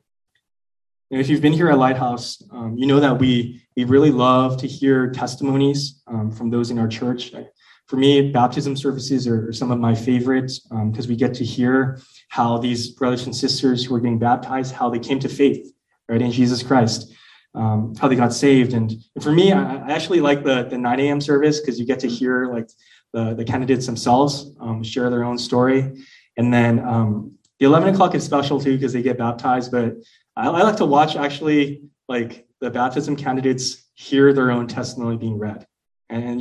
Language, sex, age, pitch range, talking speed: English, male, 20-39, 120-135 Hz, 195 wpm